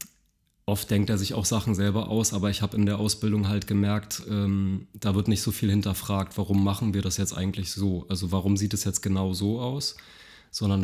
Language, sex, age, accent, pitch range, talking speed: French, male, 20-39, German, 95-105 Hz, 215 wpm